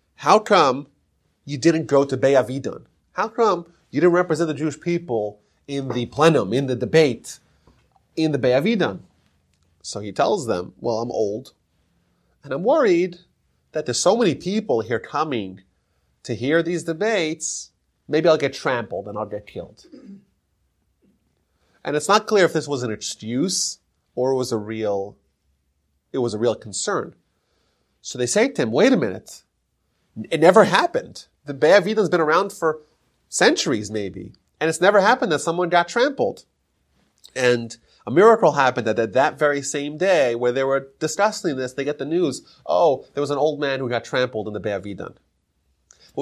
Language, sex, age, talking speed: English, male, 30-49, 170 wpm